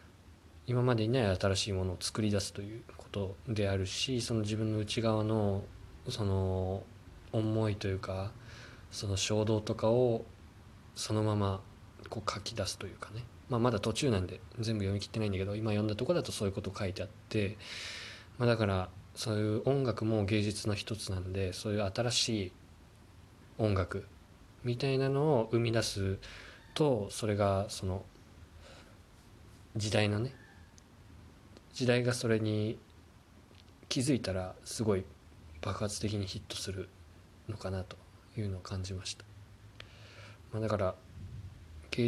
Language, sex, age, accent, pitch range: Japanese, male, 20-39, native, 95-115 Hz